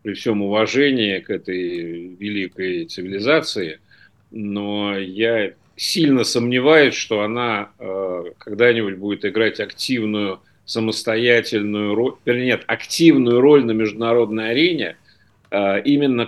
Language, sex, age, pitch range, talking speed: Russian, male, 50-69, 105-125 Hz, 105 wpm